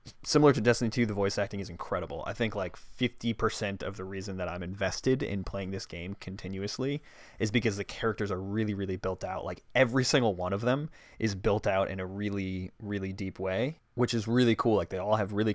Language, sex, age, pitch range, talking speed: English, male, 20-39, 95-115 Hz, 220 wpm